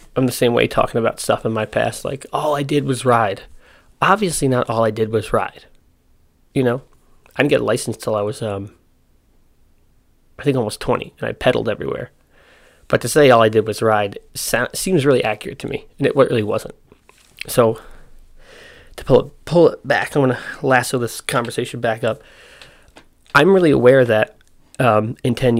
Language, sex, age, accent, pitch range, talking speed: English, male, 20-39, American, 105-125 Hz, 190 wpm